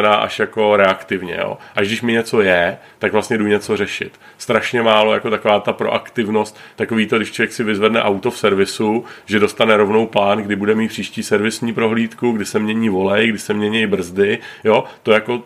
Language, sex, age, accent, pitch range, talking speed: Czech, male, 40-59, native, 105-115 Hz, 195 wpm